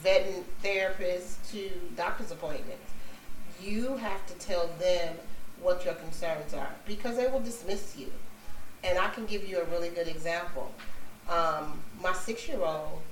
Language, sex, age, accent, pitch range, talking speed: English, female, 40-59, American, 170-215 Hz, 140 wpm